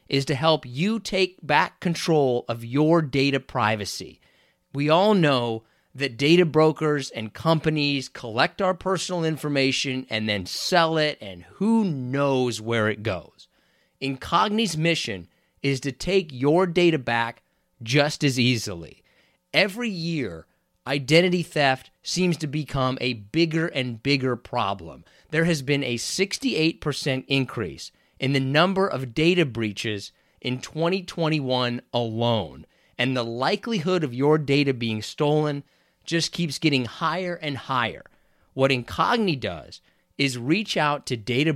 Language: English